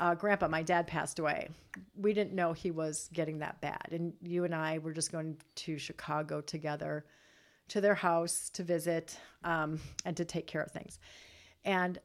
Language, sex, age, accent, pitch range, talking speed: English, female, 40-59, American, 155-185 Hz, 185 wpm